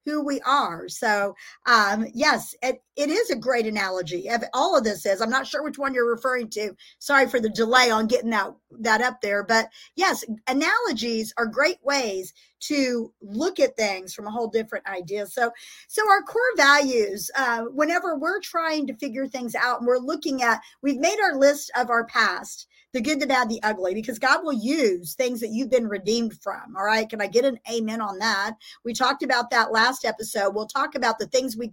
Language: English